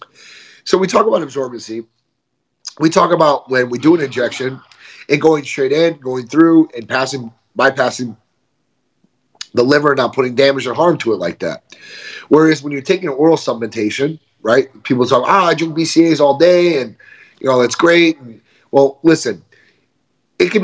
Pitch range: 125-160 Hz